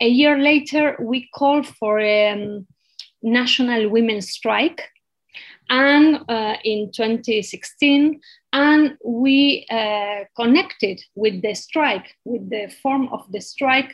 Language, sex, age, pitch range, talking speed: English, female, 30-49, 215-280 Hz, 120 wpm